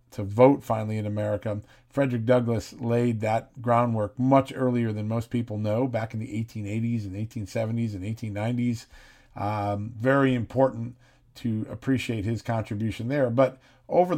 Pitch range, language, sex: 110-130 Hz, English, male